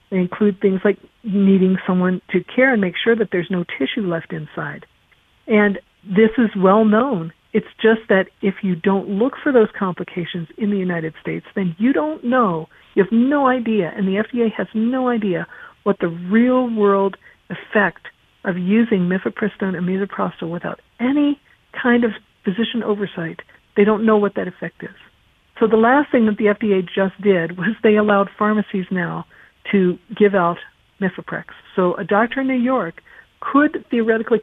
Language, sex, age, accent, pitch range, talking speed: English, female, 50-69, American, 190-235 Hz, 170 wpm